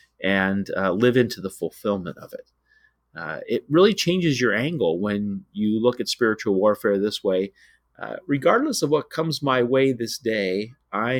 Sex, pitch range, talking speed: male, 100-135 Hz, 170 wpm